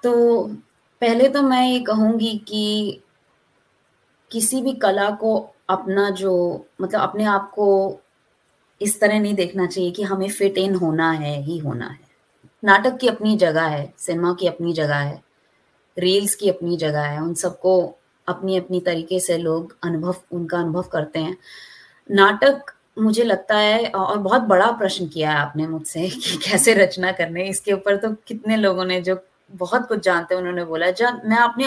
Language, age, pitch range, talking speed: Hindi, 20-39, 180-220 Hz, 170 wpm